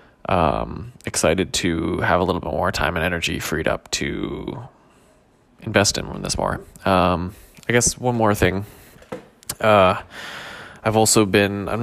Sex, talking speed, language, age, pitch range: male, 150 wpm, English, 20-39, 90-110 Hz